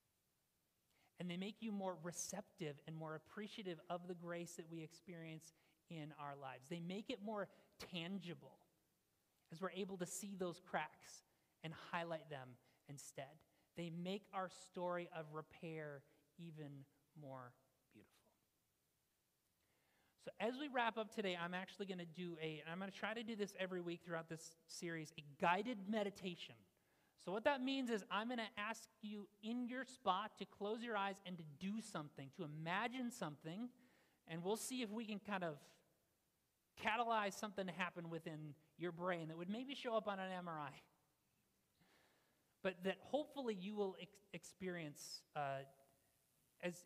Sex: male